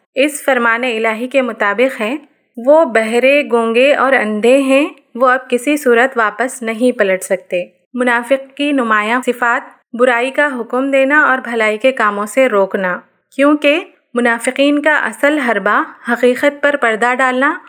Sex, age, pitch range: female, 30-49, 220-270 Hz